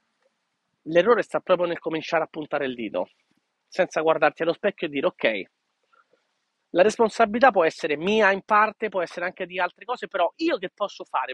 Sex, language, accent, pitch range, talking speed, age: male, Italian, native, 160-205 Hz, 180 wpm, 40-59